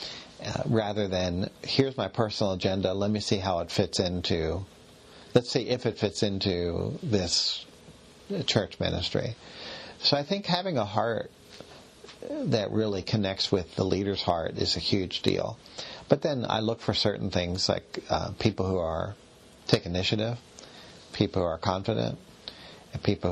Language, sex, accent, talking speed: English, male, American, 155 wpm